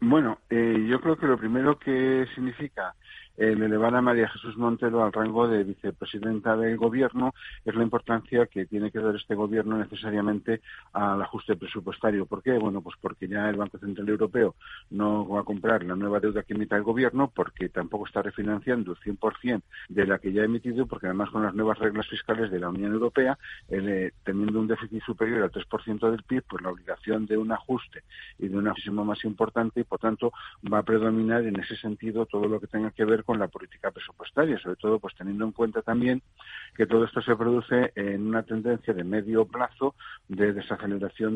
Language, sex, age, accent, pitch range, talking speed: Spanish, male, 50-69, Spanish, 100-115 Hz, 200 wpm